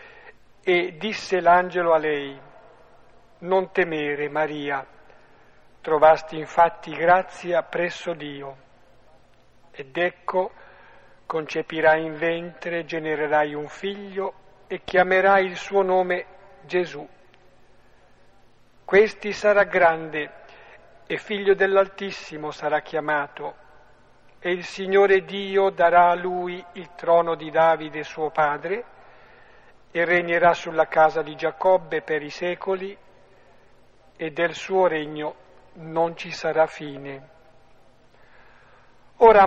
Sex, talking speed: male, 100 wpm